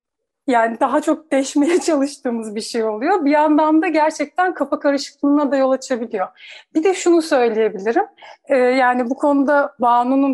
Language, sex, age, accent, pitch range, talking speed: Turkish, female, 40-59, native, 240-290 Hz, 150 wpm